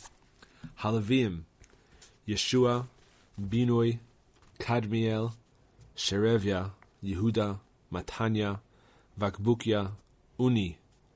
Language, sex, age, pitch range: English, male, 30-49, 95-120 Hz